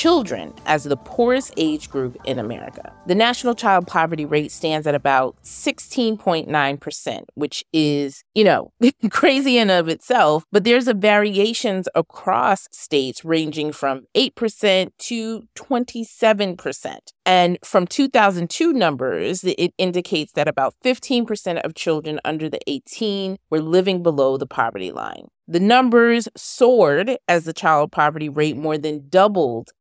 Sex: female